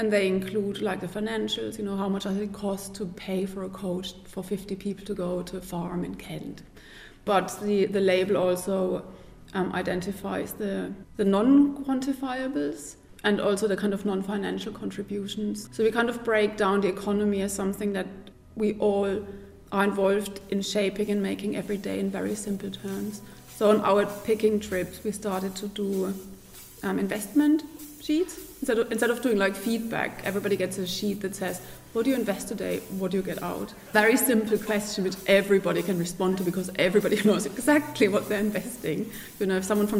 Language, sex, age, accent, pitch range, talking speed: English, female, 30-49, German, 195-215 Hz, 190 wpm